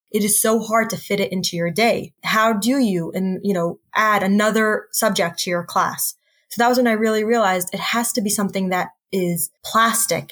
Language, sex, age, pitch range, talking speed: English, female, 20-39, 185-220 Hz, 215 wpm